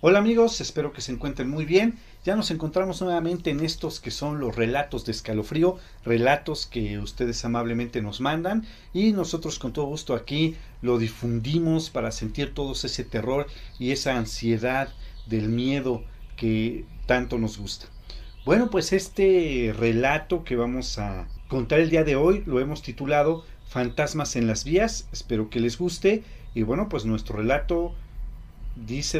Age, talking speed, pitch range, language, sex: 40-59, 160 wpm, 110-145 Hz, Spanish, male